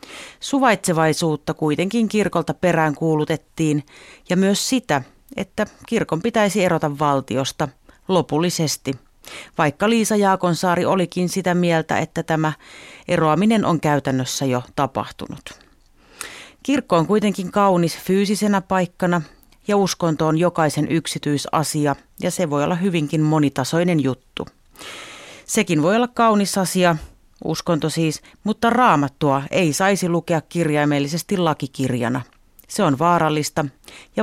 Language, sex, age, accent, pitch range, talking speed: Finnish, female, 30-49, native, 150-190 Hz, 110 wpm